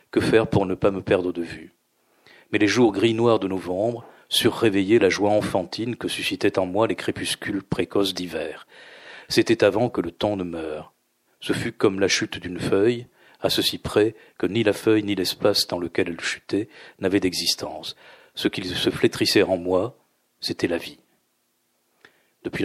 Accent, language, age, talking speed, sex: French, French, 40-59, 180 wpm, male